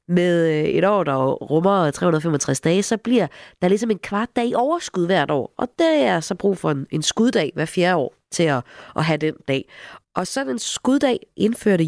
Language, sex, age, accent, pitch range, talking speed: Danish, female, 30-49, native, 150-215 Hz, 200 wpm